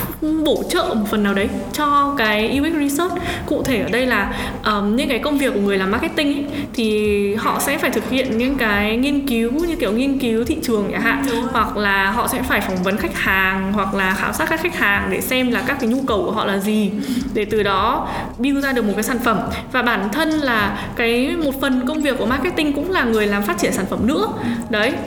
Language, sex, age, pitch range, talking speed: Vietnamese, female, 10-29, 215-280 Hz, 235 wpm